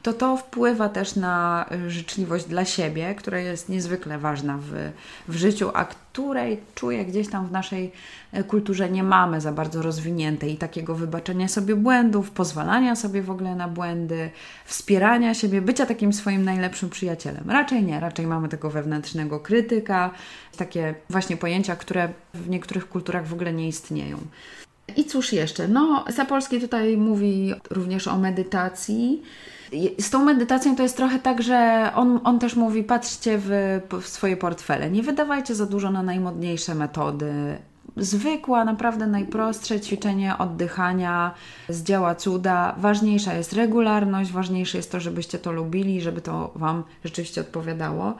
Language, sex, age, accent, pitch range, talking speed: Polish, female, 20-39, native, 170-210 Hz, 150 wpm